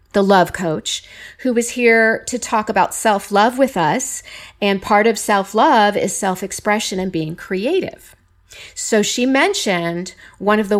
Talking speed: 150 wpm